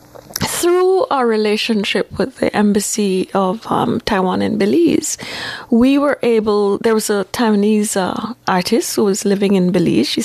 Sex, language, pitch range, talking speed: female, English, 200-260 Hz, 150 wpm